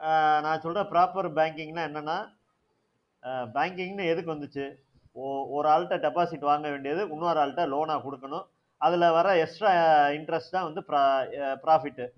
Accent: native